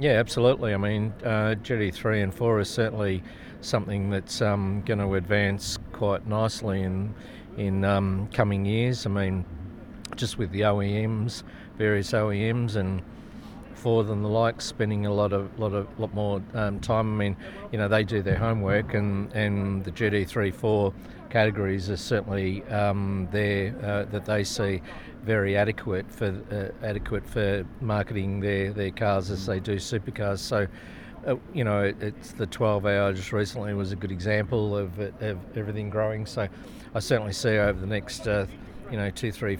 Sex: male